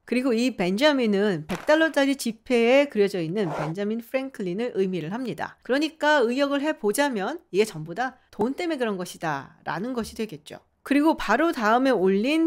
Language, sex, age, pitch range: Korean, female, 40-59, 195-280 Hz